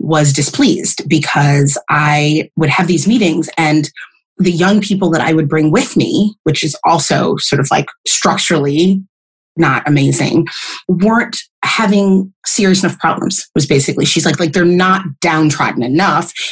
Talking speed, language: 150 wpm, English